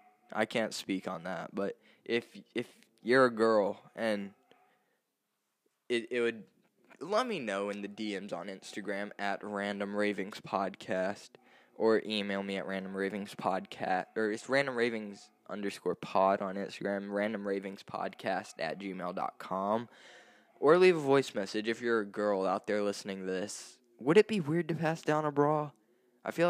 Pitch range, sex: 100-125 Hz, male